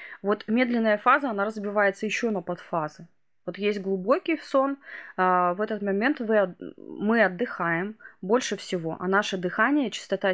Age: 20-39